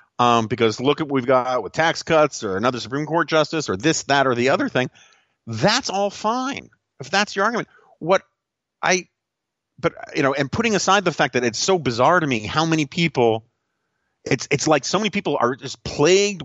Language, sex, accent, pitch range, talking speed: English, male, American, 135-180 Hz, 210 wpm